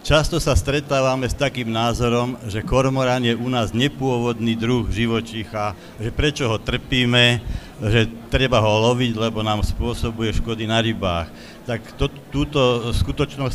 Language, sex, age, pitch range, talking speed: Slovak, male, 60-79, 110-125 Hz, 140 wpm